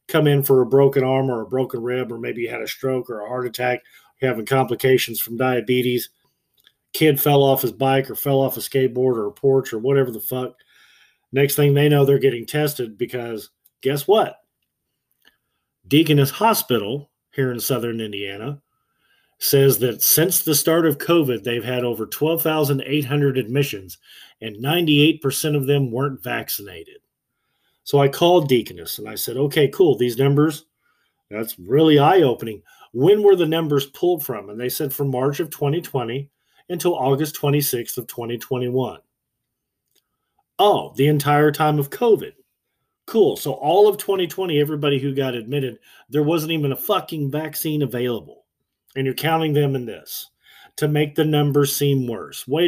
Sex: male